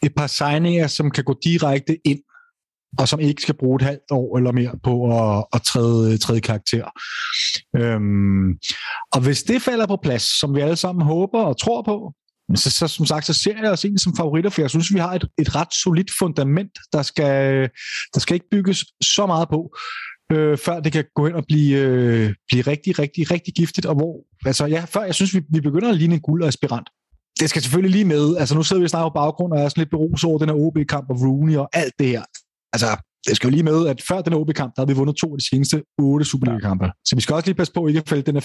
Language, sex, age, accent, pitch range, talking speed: Danish, male, 30-49, native, 130-165 Hz, 250 wpm